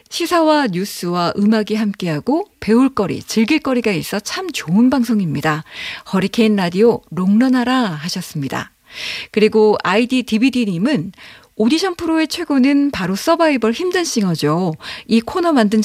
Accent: native